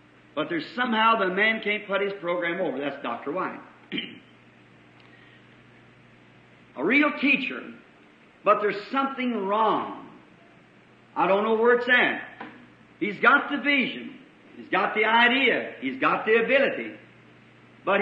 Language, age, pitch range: English, 50-69, 185-250 Hz